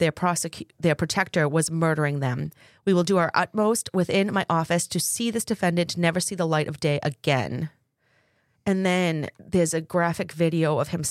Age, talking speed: 30-49, 185 wpm